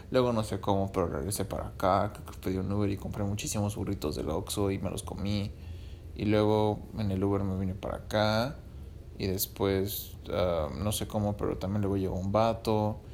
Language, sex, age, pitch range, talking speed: English, male, 20-39, 95-110 Hz, 190 wpm